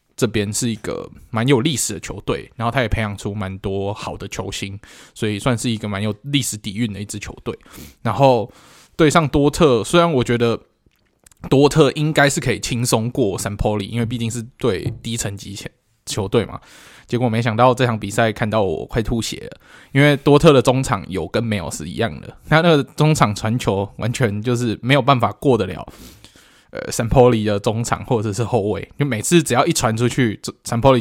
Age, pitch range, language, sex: 20-39, 105-125 Hz, Chinese, male